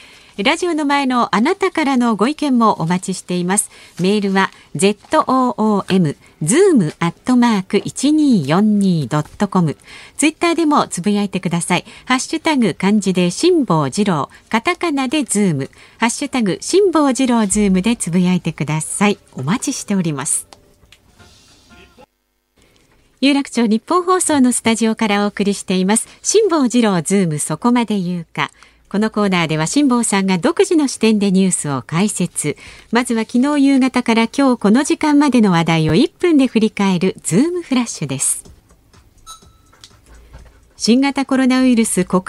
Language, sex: Japanese, female